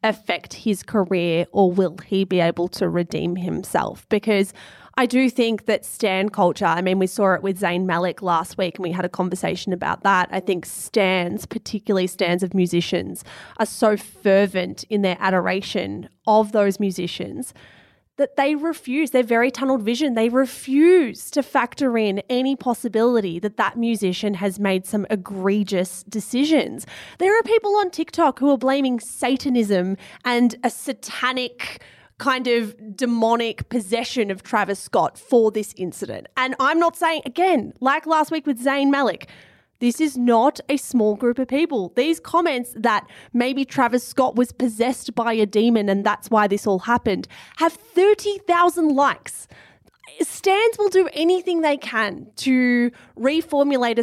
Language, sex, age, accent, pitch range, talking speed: English, female, 20-39, Australian, 195-265 Hz, 160 wpm